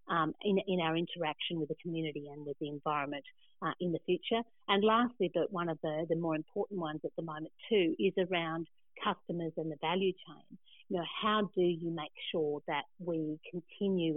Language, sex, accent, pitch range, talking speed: English, female, Australian, 155-185 Hz, 200 wpm